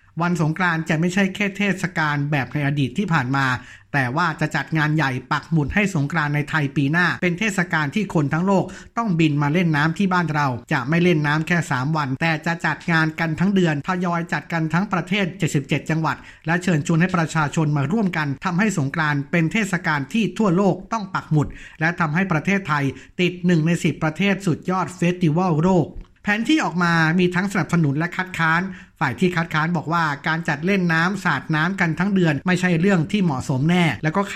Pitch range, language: 150-180 Hz, Thai